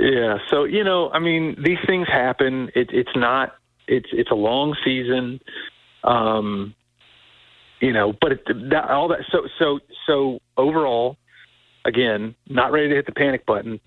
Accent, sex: American, male